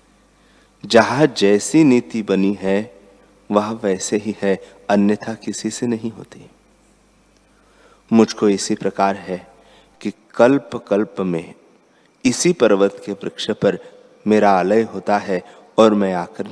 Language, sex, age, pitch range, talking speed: Hindi, male, 30-49, 100-125 Hz, 125 wpm